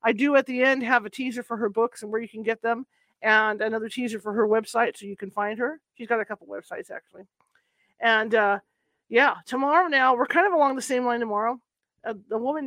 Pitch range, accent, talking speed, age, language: 215-255 Hz, American, 230 wpm, 40-59, English